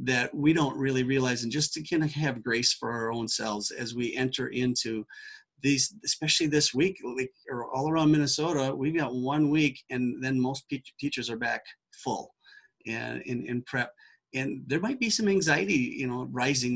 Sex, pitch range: male, 120-145 Hz